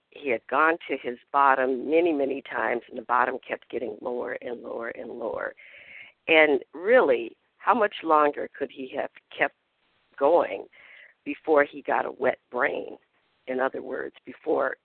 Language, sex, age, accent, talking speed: English, female, 50-69, American, 160 wpm